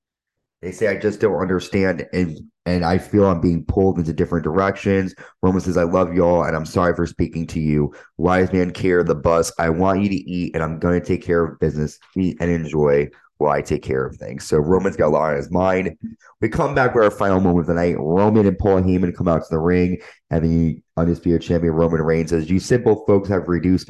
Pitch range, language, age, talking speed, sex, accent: 85-100 Hz, English, 30-49, 235 wpm, male, American